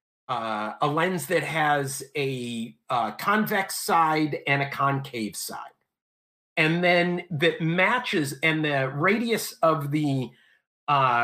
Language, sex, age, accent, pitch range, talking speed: English, male, 50-69, American, 125-170 Hz, 125 wpm